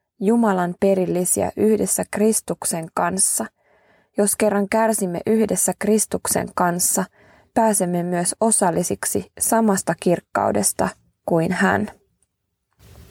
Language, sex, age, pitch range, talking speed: Finnish, female, 20-39, 175-205 Hz, 80 wpm